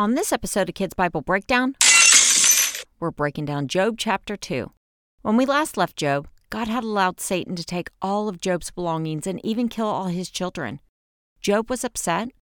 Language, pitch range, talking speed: English, 155-210 Hz, 175 wpm